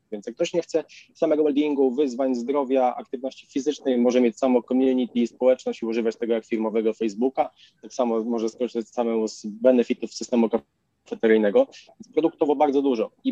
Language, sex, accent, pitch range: Polish, male, native, 120-140 Hz